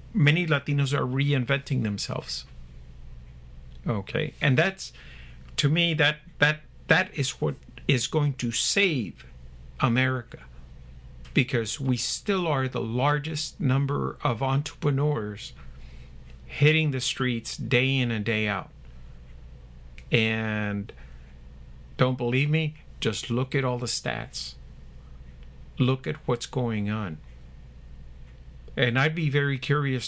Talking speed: 115 wpm